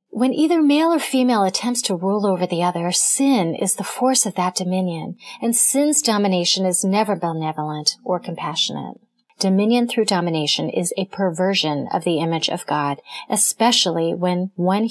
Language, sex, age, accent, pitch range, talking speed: English, female, 30-49, American, 170-235 Hz, 160 wpm